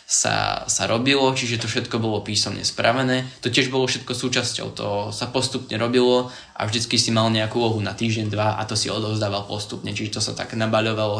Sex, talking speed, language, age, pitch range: male, 200 wpm, Slovak, 10-29, 110-125 Hz